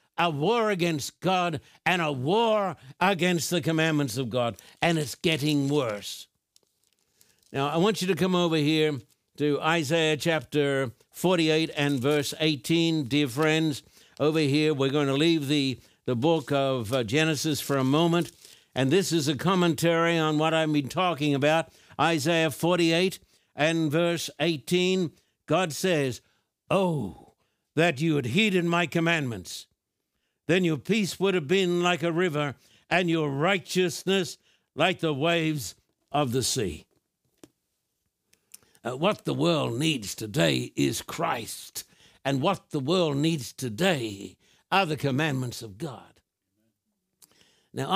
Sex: male